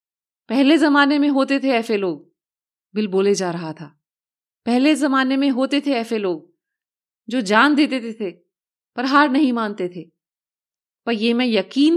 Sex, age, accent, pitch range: female, 30-49, native, 235-315 Hz